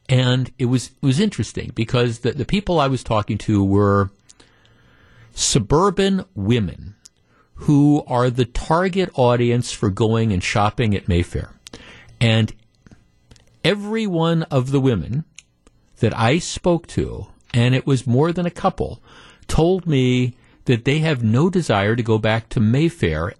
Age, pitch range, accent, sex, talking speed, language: 50-69, 110-140 Hz, American, male, 145 wpm, English